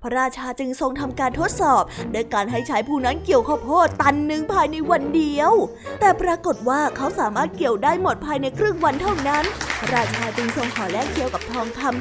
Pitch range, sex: 250-345 Hz, female